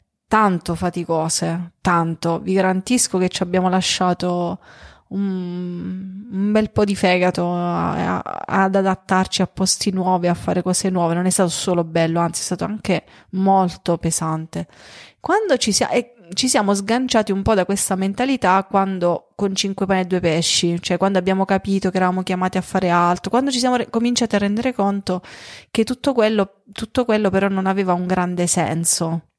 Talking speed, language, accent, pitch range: 170 wpm, Italian, native, 180-210 Hz